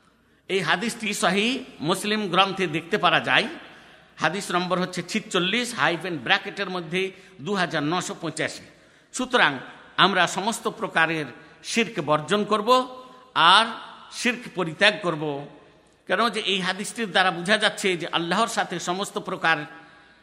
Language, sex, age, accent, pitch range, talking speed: Bengali, male, 50-69, native, 165-220 Hz, 120 wpm